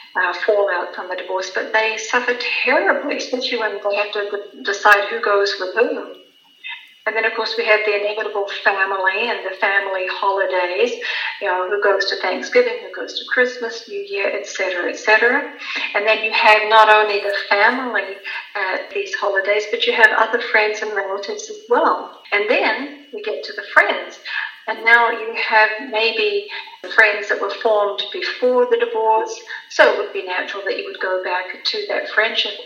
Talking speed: 180 wpm